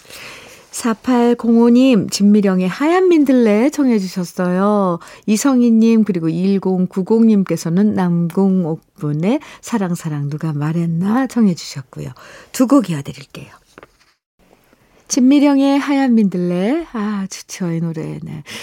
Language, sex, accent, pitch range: Korean, female, native, 170-245 Hz